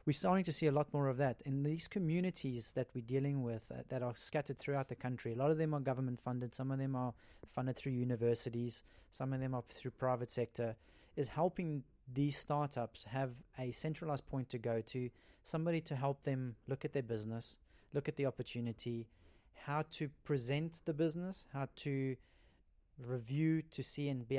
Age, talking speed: 30-49, 195 wpm